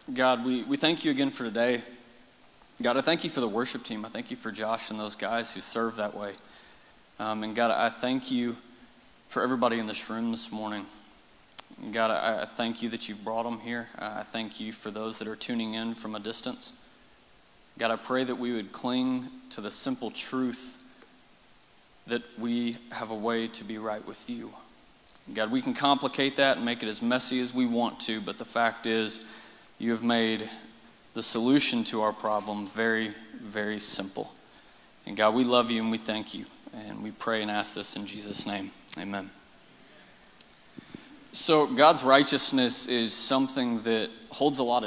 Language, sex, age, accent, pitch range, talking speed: English, male, 30-49, American, 110-130 Hz, 190 wpm